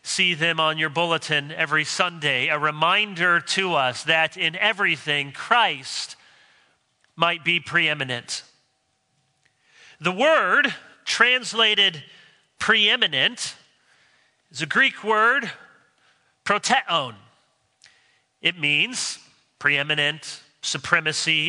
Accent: American